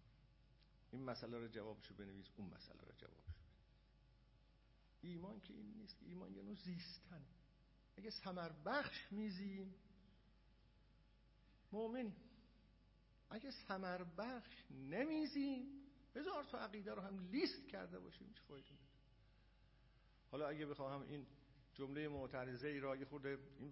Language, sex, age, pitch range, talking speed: Persian, male, 50-69, 130-205 Hz, 115 wpm